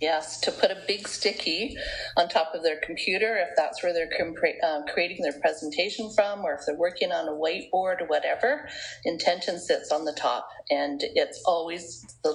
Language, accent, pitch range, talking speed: English, American, 155-245 Hz, 185 wpm